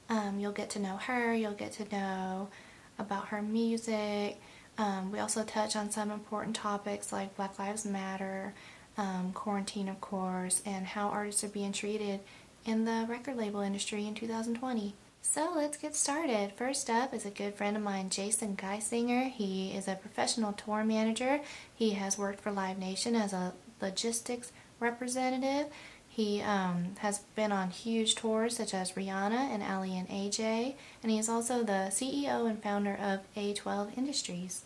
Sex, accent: female, American